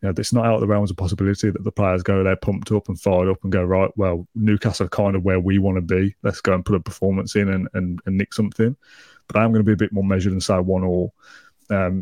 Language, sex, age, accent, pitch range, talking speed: English, male, 20-39, British, 95-105 Hz, 300 wpm